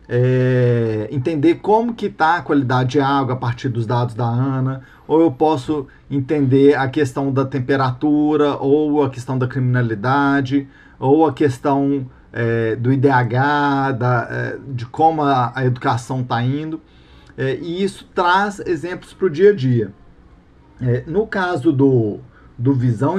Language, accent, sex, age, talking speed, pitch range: Portuguese, Brazilian, male, 50-69, 135 wpm, 130-175 Hz